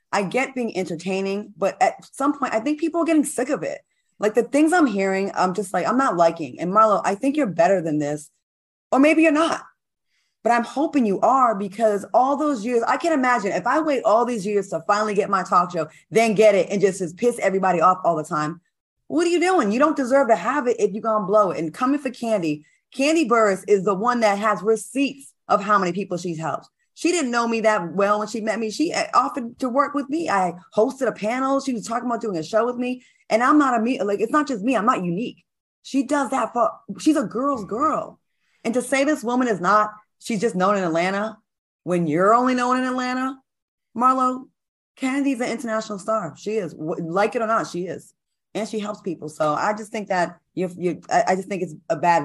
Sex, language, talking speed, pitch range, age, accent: female, English, 240 wpm, 185-260 Hz, 20-39, American